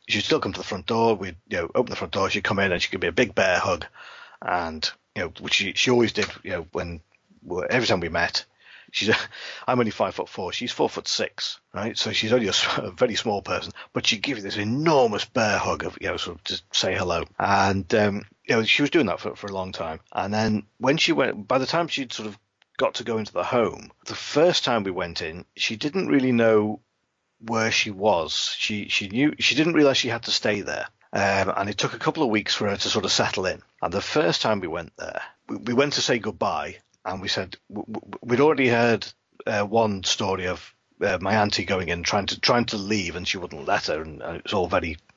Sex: male